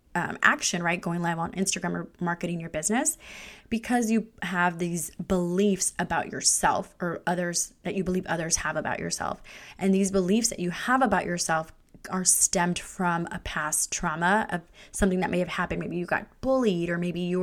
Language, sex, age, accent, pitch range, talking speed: English, female, 20-39, American, 175-200 Hz, 185 wpm